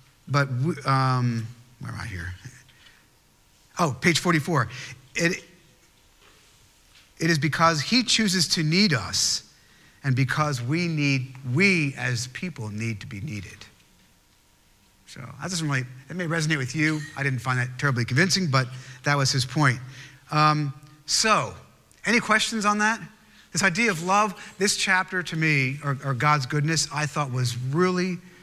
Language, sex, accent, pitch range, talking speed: English, male, American, 130-180 Hz, 150 wpm